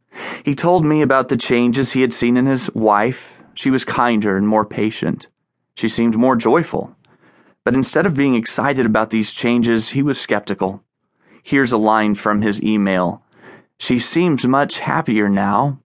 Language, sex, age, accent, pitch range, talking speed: English, male, 30-49, American, 110-130 Hz, 165 wpm